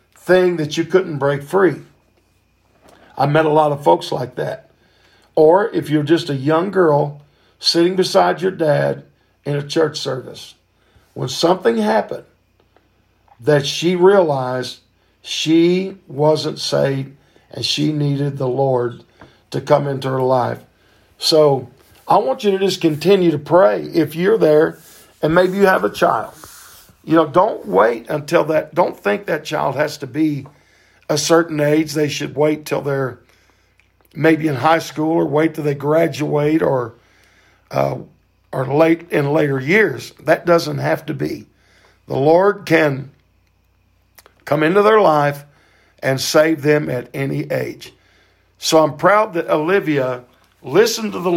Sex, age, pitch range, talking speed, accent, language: male, 50-69, 130-165 Hz, 150 wpm, American, English